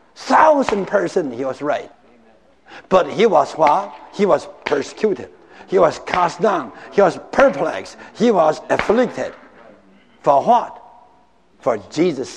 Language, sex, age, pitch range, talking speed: English, male, 60-79, 170-255 Hz, 125 wpm